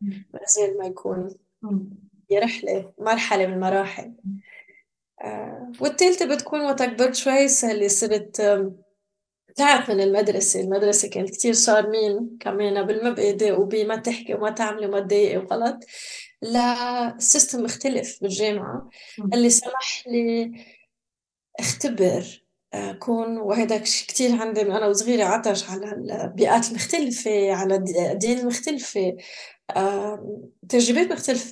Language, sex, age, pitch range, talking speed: English, female, 20-39, 205-250 Hz, 100 wpm